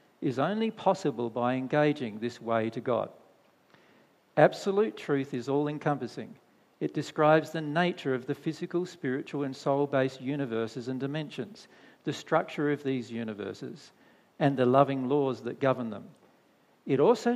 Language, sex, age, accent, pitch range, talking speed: English, male, 50-69, Australian, 130-160 Hz, 140 wpm